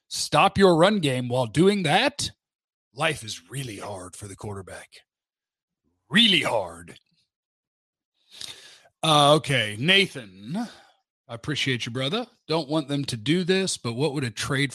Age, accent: 40-59, American